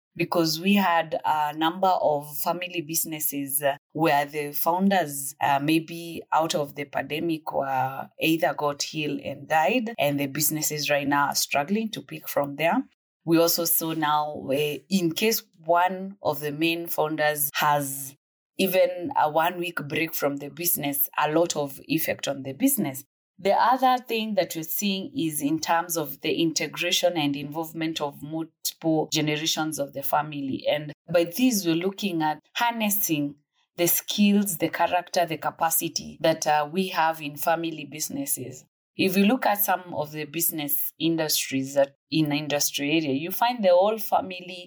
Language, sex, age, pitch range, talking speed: English, female, 30-49, 150-180 Hz, 165 wpm